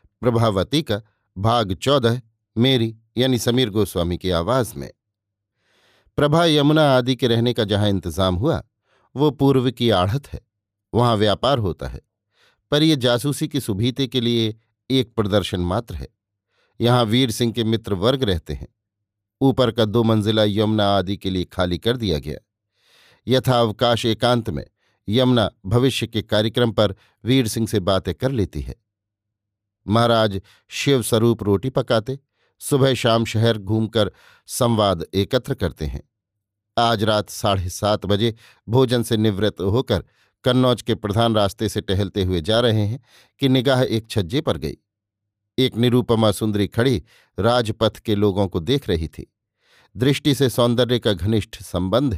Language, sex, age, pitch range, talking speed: Hindi, male, 50-69, 100-125 Hz, 150 wpm